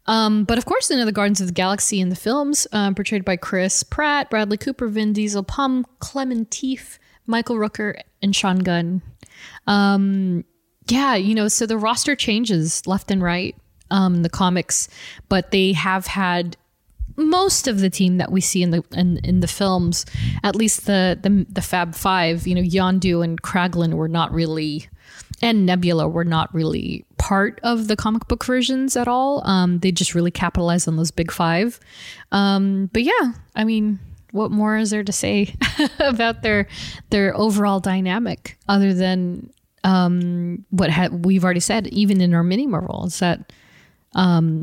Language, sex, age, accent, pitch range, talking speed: English, female, 20-39, American, 175-215 Hz, 175 wpm